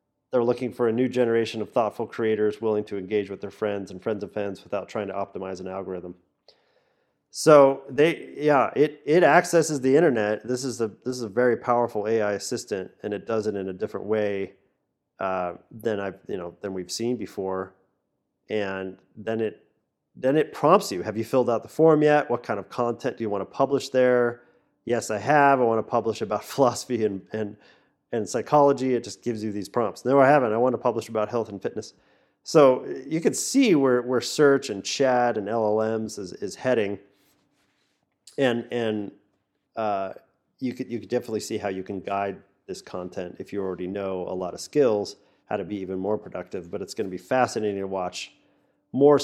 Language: English